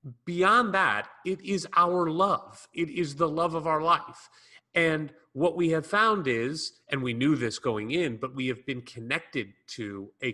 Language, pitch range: English, 125-175 Hz